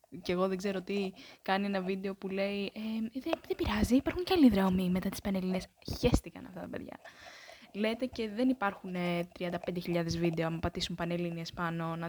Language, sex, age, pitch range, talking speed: Greek, female, 10-29, 180-250 Hz, 170 wpm